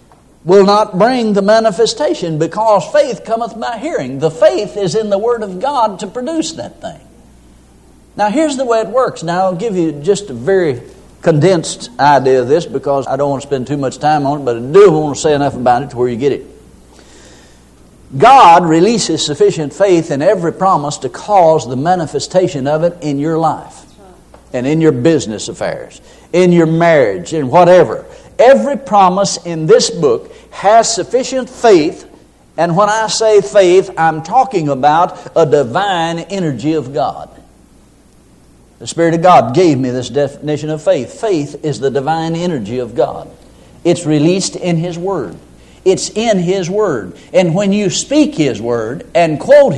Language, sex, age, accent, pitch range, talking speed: English, male, 60-79, American, 145-210 Hz, 175 wpm